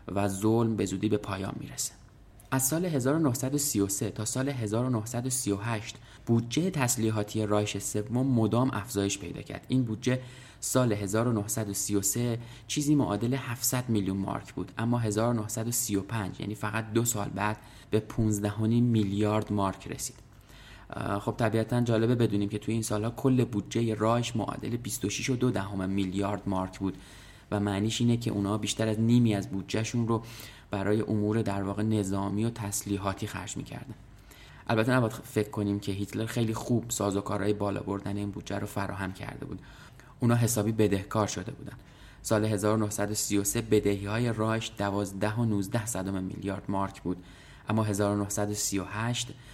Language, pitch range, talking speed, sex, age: Persian, 100-120 Hz, 140 wpm, male, 20-39